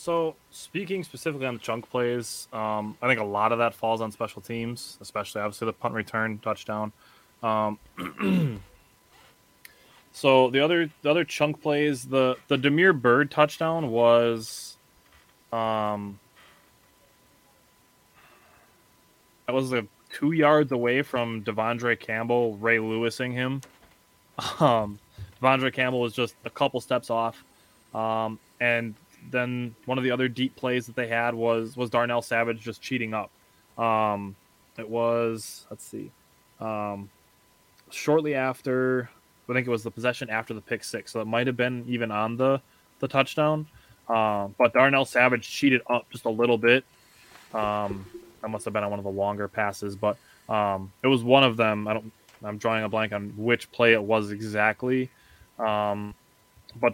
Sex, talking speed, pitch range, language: male, 155 wpm, 110-130 Hz, English